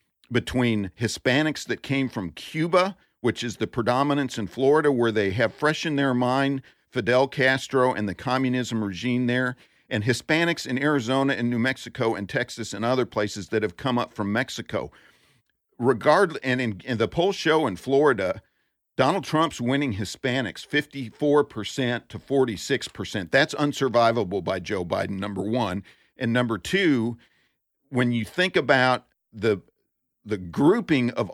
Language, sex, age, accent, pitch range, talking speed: English, male, 50-69, American, 105-140 Hz, 150 wpm